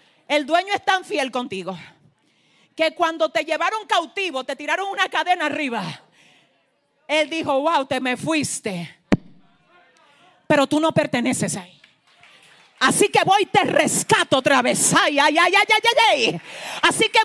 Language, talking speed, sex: Spanish, 150 wpm, female